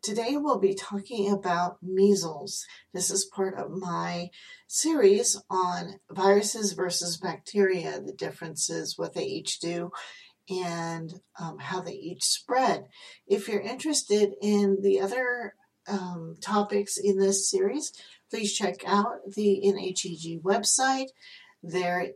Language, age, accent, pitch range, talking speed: English, 40-59, American, 170-210 Hz, 125 wpm